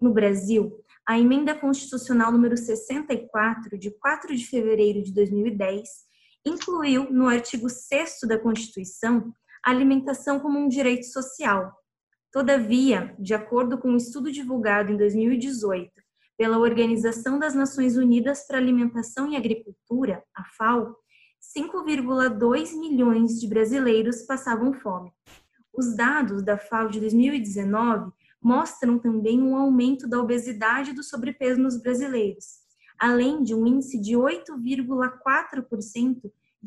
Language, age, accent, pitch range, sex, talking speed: Portuguese, 10-29, Brazilian, 225-265 Hz, female, 125 wpm